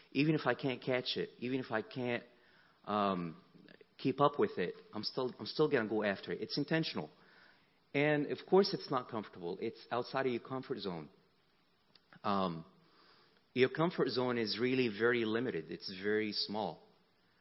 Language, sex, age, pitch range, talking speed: English, male, 30-49, 95-125 Hz, 170 wpm